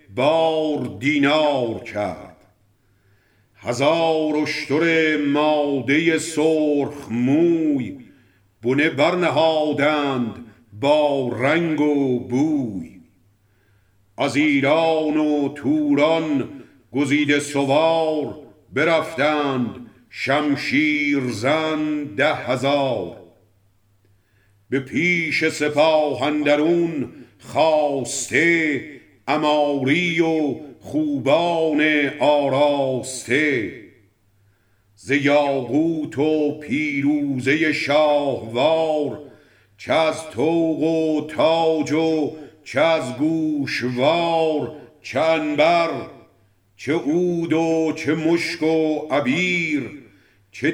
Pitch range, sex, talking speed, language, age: 125-160 Hz, male, 65 wpm, Persian, 50-69